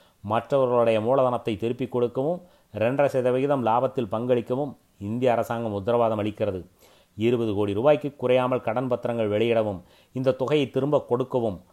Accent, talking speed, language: native, 120 wpm, Tamil